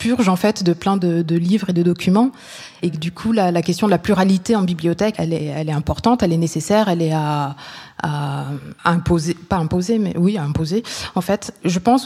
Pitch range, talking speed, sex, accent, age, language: 175-195 Hz, 225 wpm, female, French, 20-39, French